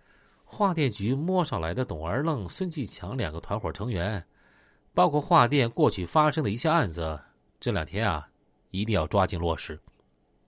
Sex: male